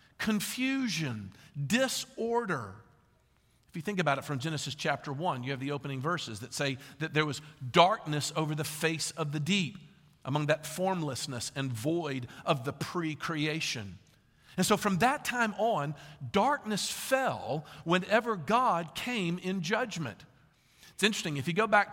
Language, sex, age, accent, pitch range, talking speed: English, male, 50-69, American, 145-205 Hz, 150 wpm